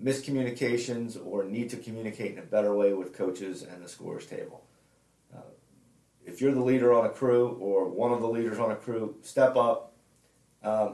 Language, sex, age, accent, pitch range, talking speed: English, male, 40-59, American, 105-130 Hz, 185 wpm